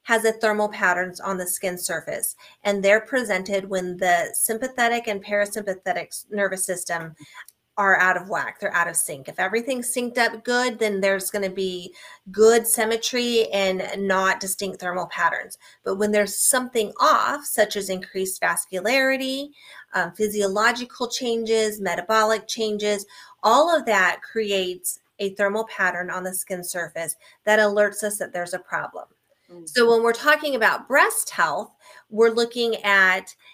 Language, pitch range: English, 195-230 Hz